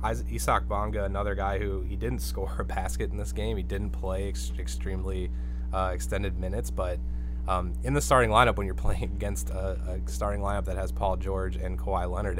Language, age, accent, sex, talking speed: English, 20-39, American, male, 210 wpm